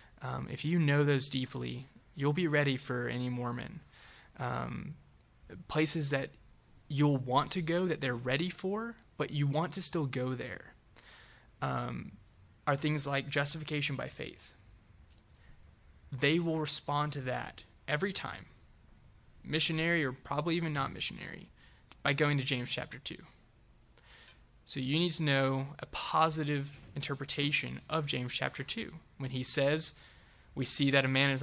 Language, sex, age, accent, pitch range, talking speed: English, male, 20-39, American, 130-150 Hz, 145 wpm